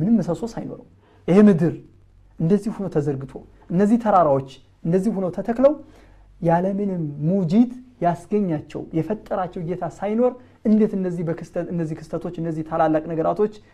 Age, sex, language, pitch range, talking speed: 30-49, male, Amharic, 150-210 Hz, 120 wpm